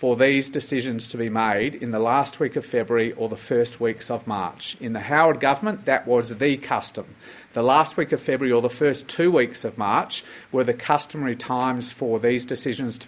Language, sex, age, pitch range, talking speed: Arabic, male, 50-69, 80-115 Hz, 210 wpm